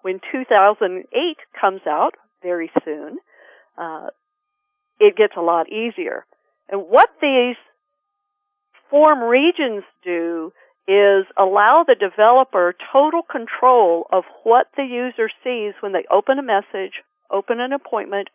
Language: English